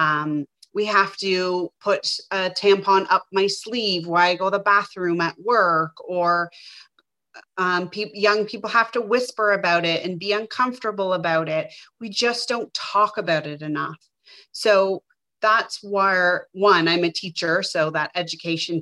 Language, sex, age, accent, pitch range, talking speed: English, female, 30-49, American, 165-210 Hz, 155 wpm